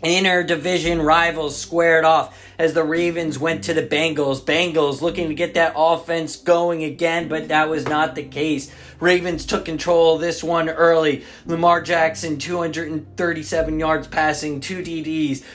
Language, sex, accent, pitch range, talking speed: English, male, American, 155-170 Hz, 155 wpm